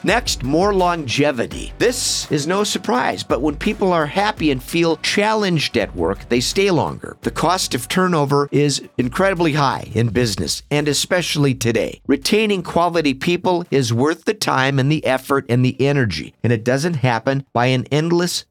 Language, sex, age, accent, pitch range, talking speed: English, male, 50-69, American, 125-170 Hz, 170 wpm